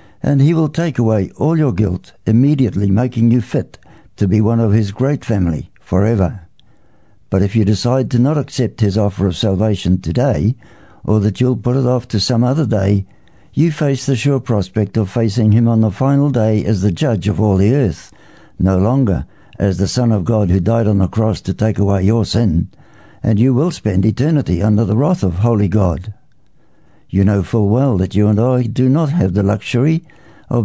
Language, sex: English, male